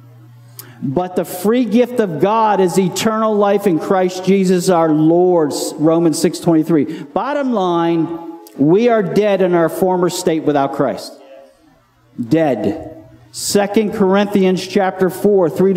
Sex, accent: male, American